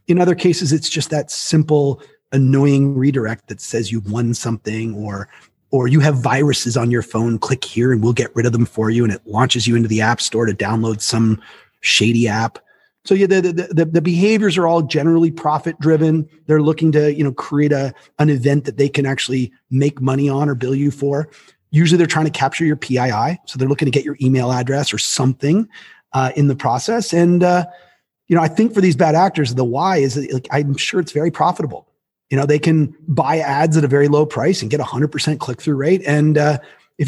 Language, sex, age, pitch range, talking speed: English, male, 30-49, 130-165 Hz, 220 wpm